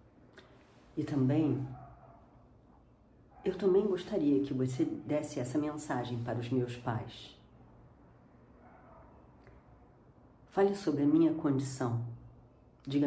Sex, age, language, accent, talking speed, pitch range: female, 40-59, Portuguese, Brazilian, 90 wpm, 120-155 Hz